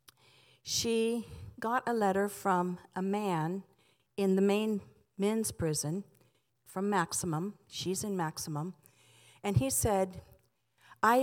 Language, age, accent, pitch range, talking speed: English, 50-69, American, 170-215 Hz, 110 wpm